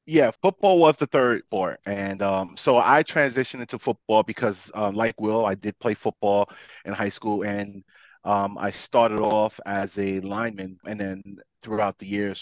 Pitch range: 100-120 Hz